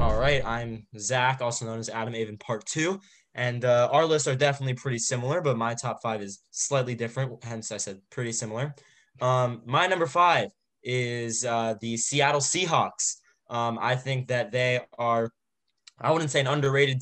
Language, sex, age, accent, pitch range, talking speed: English, male, 20-39, American, 115-135 Hz, 180 wpm